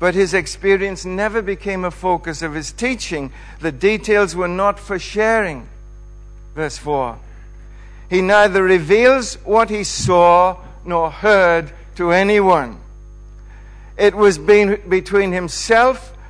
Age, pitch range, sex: 60-79, 125-190 Hz, male